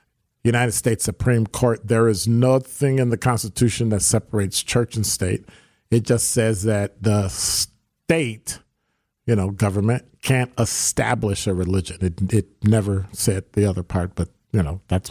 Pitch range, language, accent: 110-140 Hz, English, American